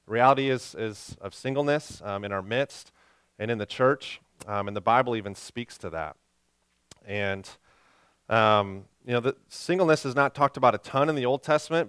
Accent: American